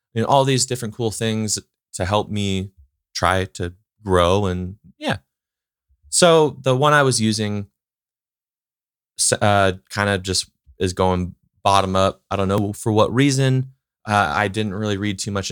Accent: American